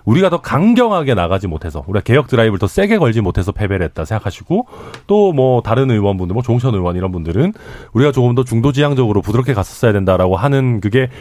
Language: Korean